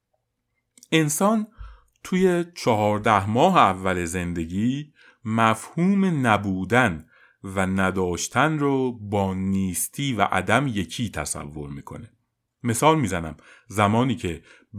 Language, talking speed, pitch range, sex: Persian, 90 wpm, 95-125 Hz, male